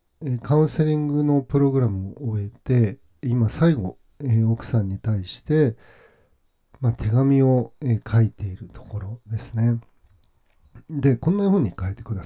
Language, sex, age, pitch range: Japanese, male, 50-69, 105-135 Hz